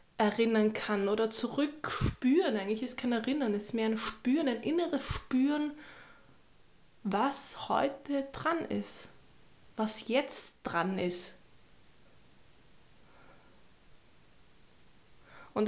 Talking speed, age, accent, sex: 95 wpm, 20-39, German, female